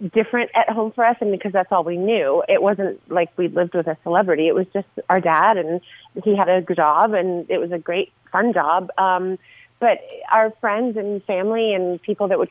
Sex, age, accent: female, 30-49, American